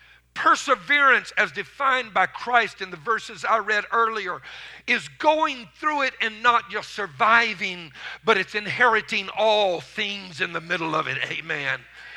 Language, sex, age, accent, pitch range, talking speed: English, male, 50-69, American, 135-225 Hz, 150 wpm